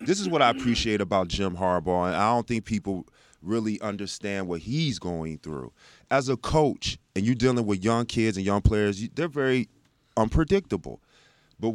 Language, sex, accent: English, male, American